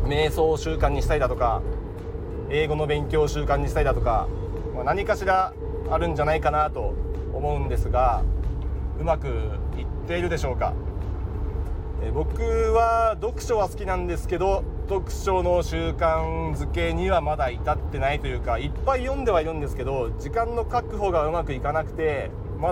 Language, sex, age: Japanese, male, 30-49